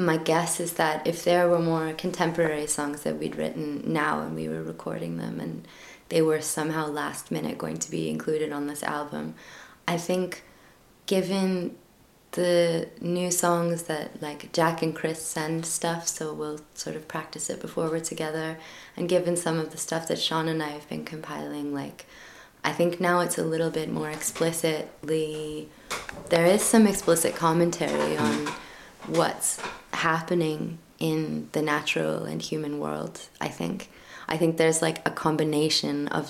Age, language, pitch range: 20-39, German, 145-165 Hz